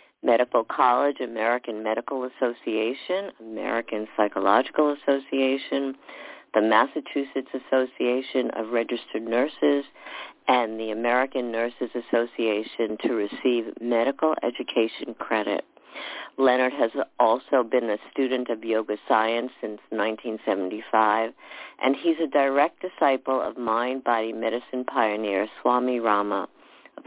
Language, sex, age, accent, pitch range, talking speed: English, female, 50-69, American, 115-140 Hz, 105 wpm